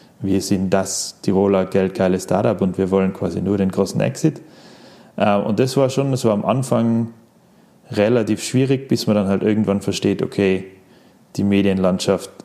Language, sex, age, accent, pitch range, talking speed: German, male, 20-39, German, 95-115 Hz, 155 wpm